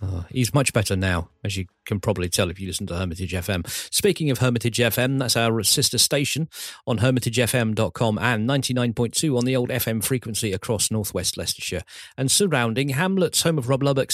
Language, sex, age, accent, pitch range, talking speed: English, male, 40-59, British, 105-135 Hz, 180 wpm